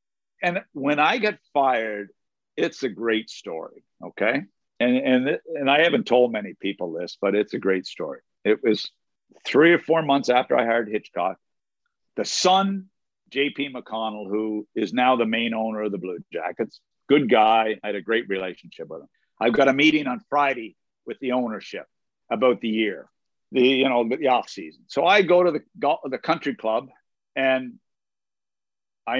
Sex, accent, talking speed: male, American, 175 wpm